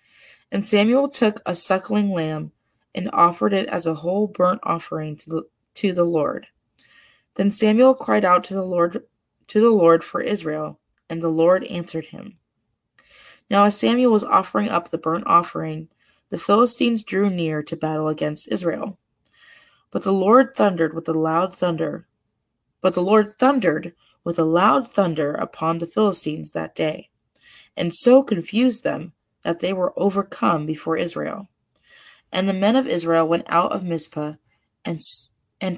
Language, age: English, 20-39